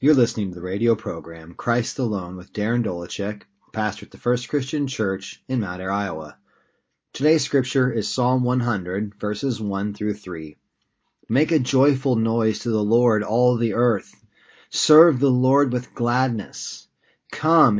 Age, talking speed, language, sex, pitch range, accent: 30-49, 155 wpm, English, male, 105-135 Hz, American